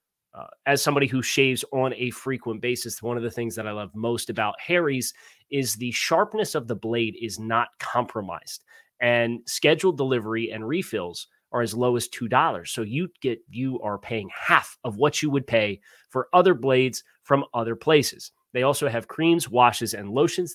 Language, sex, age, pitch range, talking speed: English, male, 30-49, 115-160 Hz, 185 wpm